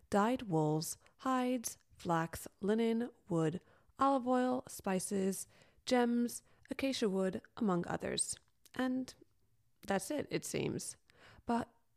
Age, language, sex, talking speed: 30-49, English, female, 100 wpm